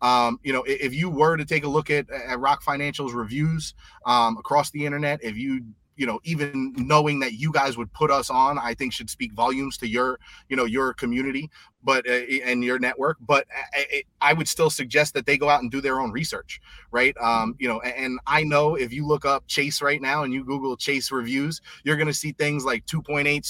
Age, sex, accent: 30-49, male, American